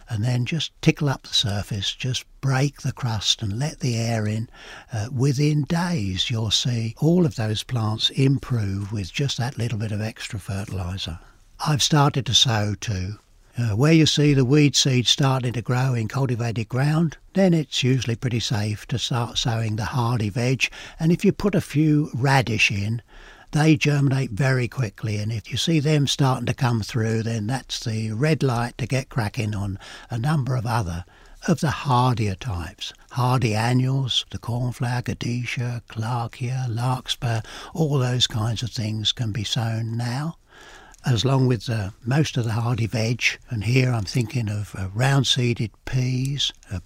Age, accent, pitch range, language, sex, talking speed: 60-79, British, 110-135 Hz, English, male, 175 wpm